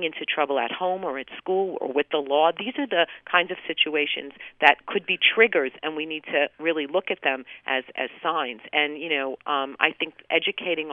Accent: American